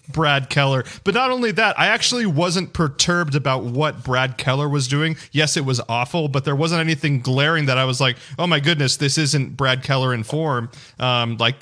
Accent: American